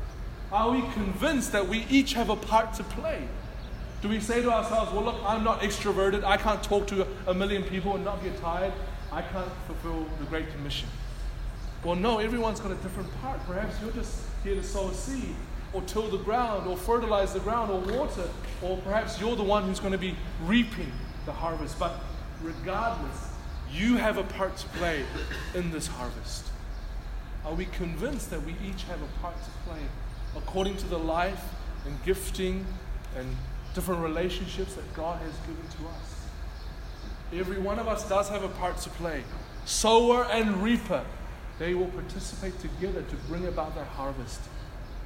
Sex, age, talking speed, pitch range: male, 30-49, 180 wpm, 130-205 Hz